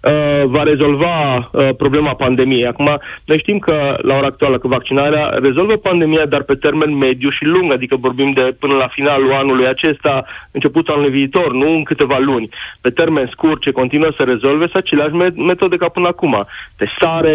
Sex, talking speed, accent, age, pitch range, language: male, 180 wpm, native, 30-49, 135-160 Hz, Romanian